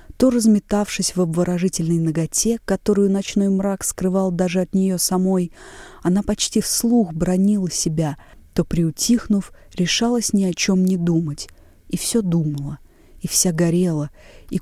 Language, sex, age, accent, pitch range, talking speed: Russian, female, 30-49, native, 165-200 Hz, 135 wpm